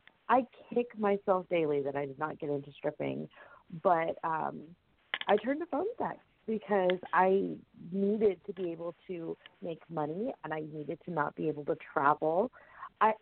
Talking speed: 170 wpm